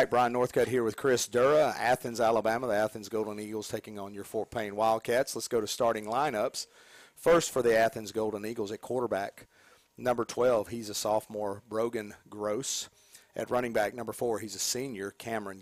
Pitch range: 105-115 Hz